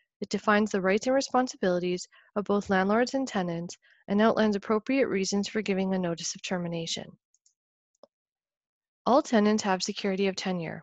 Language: English